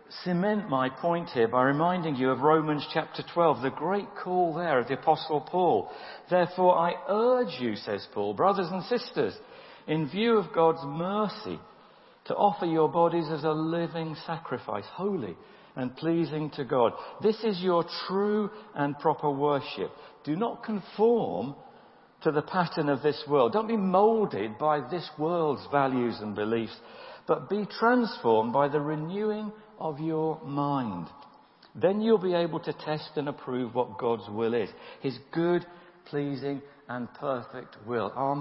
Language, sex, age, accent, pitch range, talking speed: English, male, 50-69, British, 145-195 Hz, 155 wpm